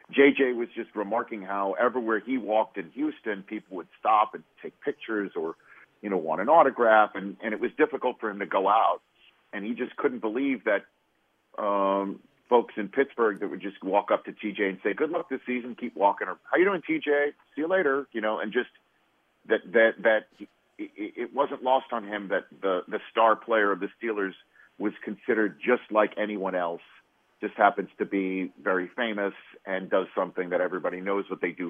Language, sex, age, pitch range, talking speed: English, male, 50-69, 95-125 Hz, 205 wpm